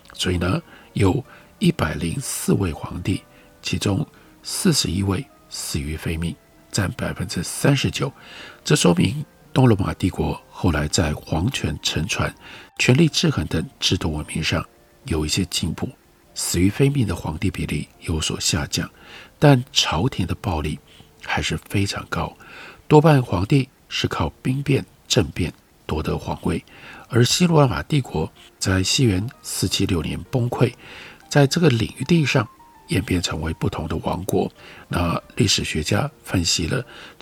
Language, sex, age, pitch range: Chinese, male, 50-69, 90-145 Hz